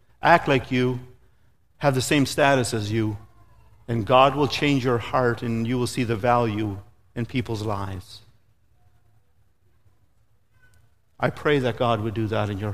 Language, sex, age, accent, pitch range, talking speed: English, male, 50-69, American, 105-135 Hz, 155 wpm